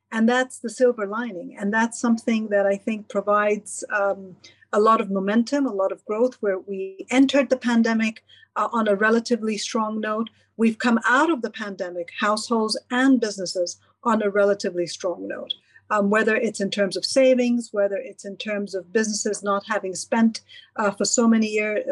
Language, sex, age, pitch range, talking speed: English, female, 50-69, 200-235 Hz, 185 wpm